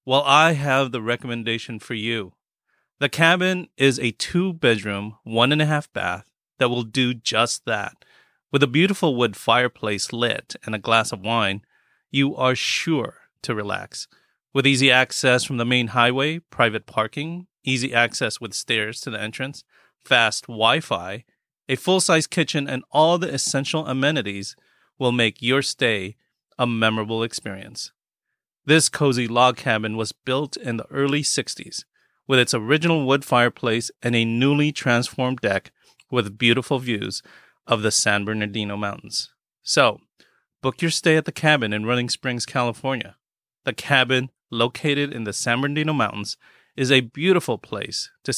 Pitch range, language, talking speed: 115-140 Hz, English, 150 wpm